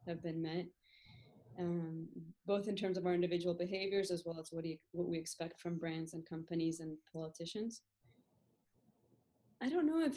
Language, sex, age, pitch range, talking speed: English, female, 20-39, 170-205 Hz, 170 wpm